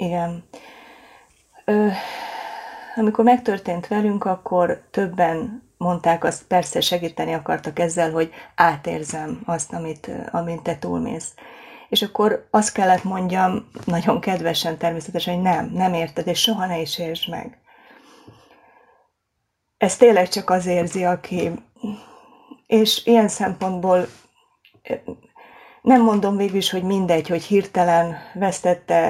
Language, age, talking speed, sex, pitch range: Hungarian, 30-49, 115 wpm, female, 175-210 Hz